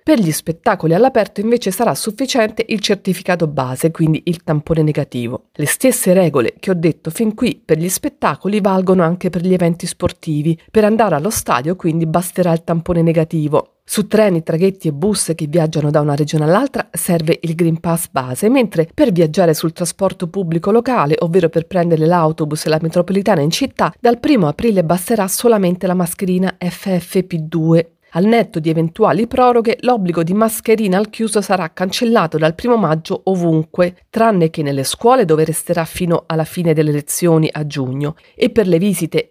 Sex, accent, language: female, native, Italian